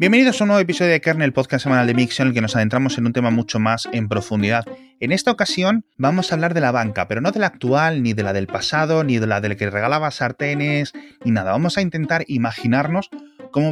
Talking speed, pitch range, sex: 250 wpm, 105-145 Hz, male